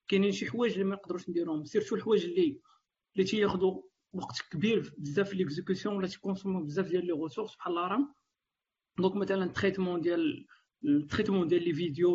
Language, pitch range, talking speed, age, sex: Arabic, 190-255 Hz, 170 wpm, 40-59, male